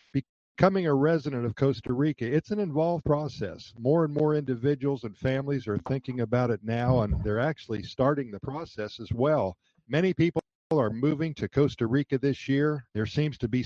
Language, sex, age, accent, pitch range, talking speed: English, male, 50-69, American, 115-145 Hz, 180 wpm